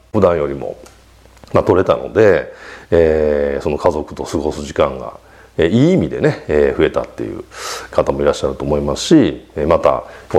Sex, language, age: male, Japanese, 40-59